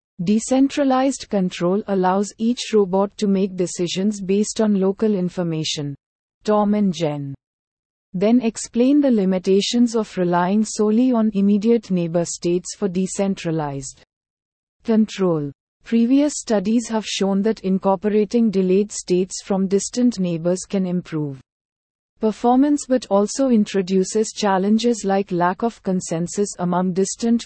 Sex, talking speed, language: female, 115 wpm, English